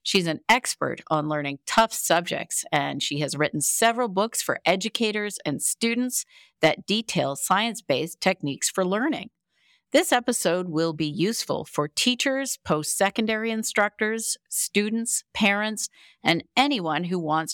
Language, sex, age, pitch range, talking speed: English, female, 50-69, 155-225 Hz, 130 wpm